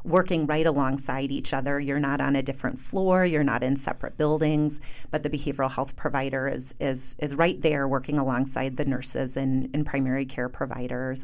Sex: female